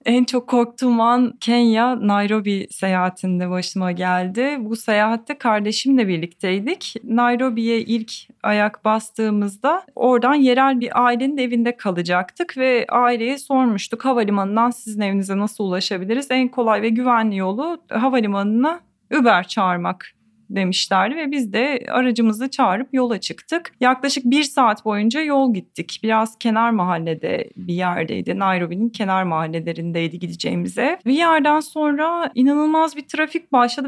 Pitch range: 205-265 Hz